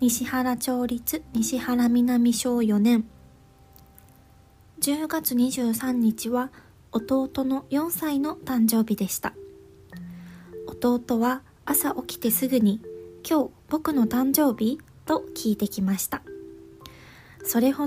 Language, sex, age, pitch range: Japanese, female, 20-39, 180-265 Hz